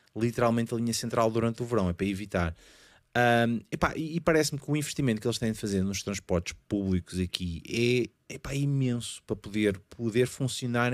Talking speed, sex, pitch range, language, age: 165 wpm, male, 95-125 Hz, Portuguese, 30-49